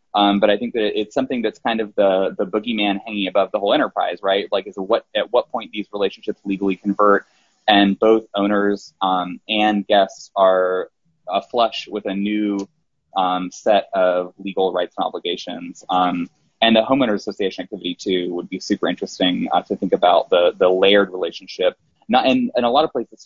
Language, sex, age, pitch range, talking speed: English, male, 20-39, 95-105 Hz, 190 wpm